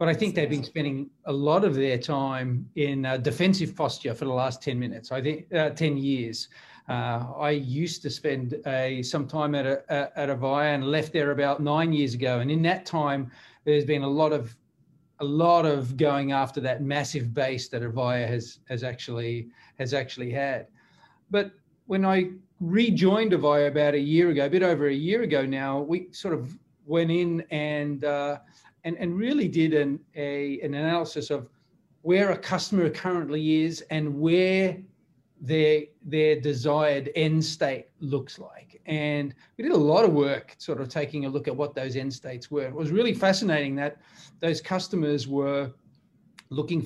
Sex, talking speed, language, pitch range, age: male, 180 wpm, English, 140-165 Hz, 40-59